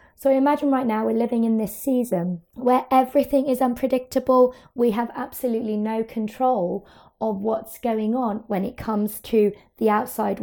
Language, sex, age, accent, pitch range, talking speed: English, female, 20-39, British, 205-245 Hz, 160 wpm